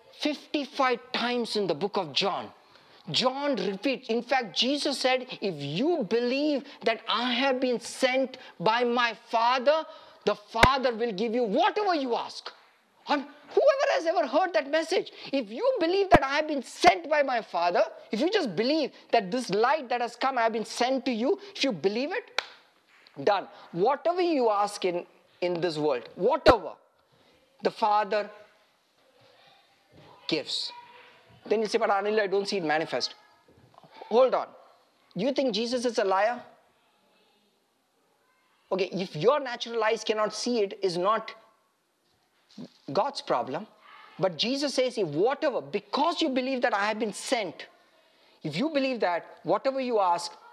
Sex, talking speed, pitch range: male, 155 wpm, 215-300 Hz